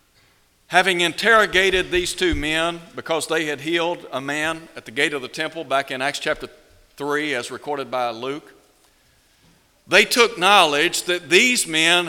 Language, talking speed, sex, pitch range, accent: English, 160 wpm, male, 135-195 Hz, American